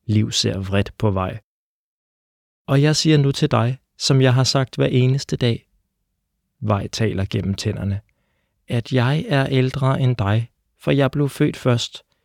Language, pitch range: Danish, 105-135 Hz